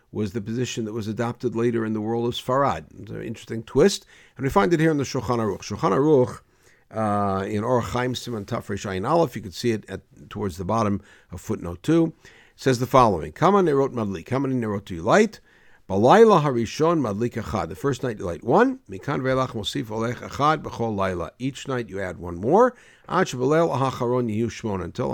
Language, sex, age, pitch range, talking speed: English, male, 60-79, 105-135 Hz, 185 wpm